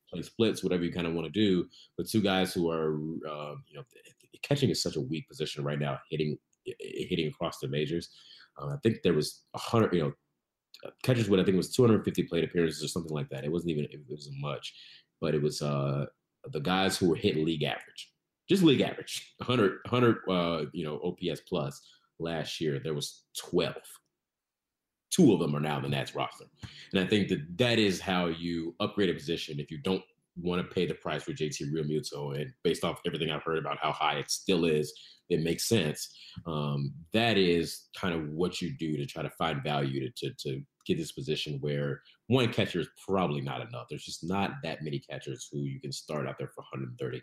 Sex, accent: male, American